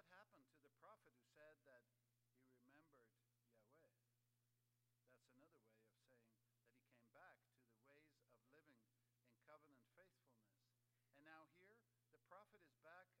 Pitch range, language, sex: 120-145 Hz, English, male